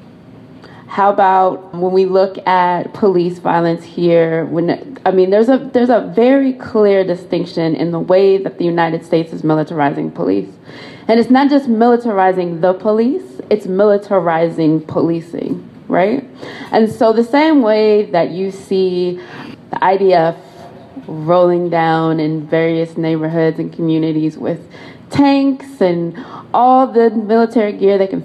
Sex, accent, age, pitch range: female, American, 20-39, 170-240 Hz